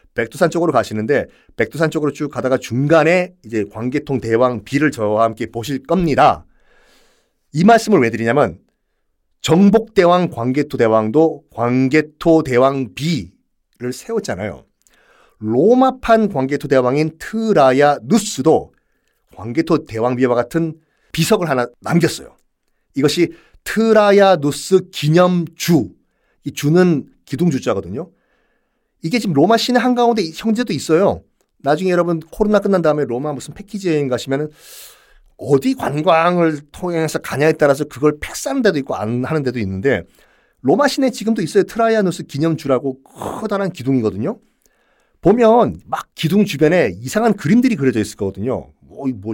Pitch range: 130-185 Hz